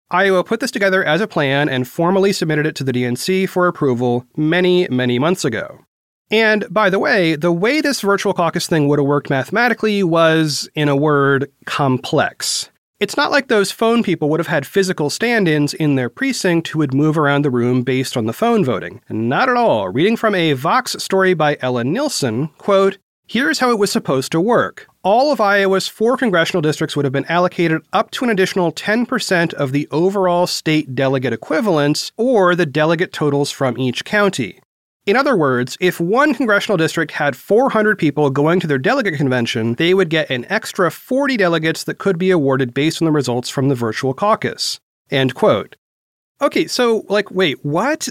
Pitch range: 145-205 Hz